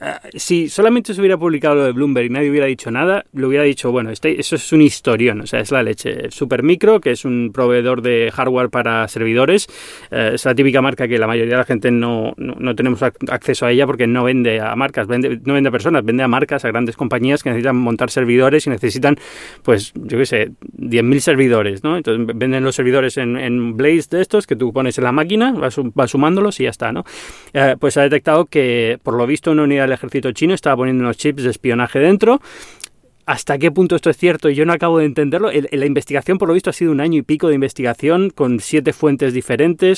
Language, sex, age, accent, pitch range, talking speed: Spanish, male, 30-49, Spanish, 125-155 Hz, 235 wpm